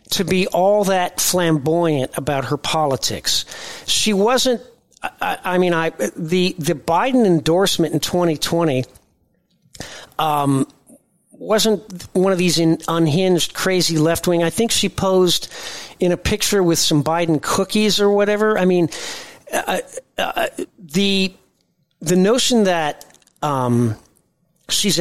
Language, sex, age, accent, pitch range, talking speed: English, male, 40-59, American, 155-190 Hz, 125 wpm